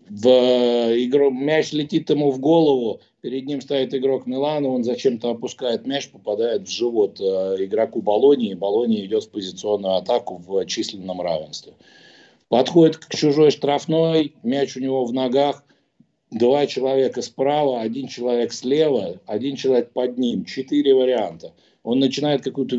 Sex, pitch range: male, 115-145 Hz